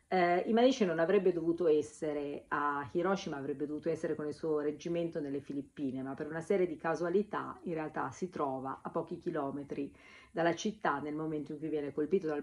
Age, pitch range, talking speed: 50-69, 150-190 Hz, 185 wpm